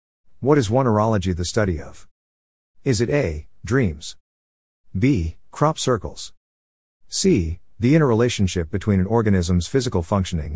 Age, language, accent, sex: 50-69, English, American, male